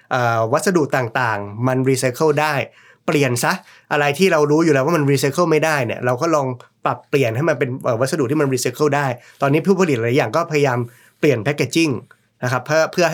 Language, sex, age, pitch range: Thai, male, 20-39, 125-150 Hz